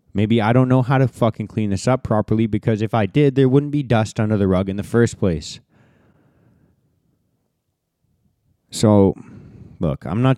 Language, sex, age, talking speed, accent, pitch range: English, male, 20-39, 175 wpm, American, 95-110 Hz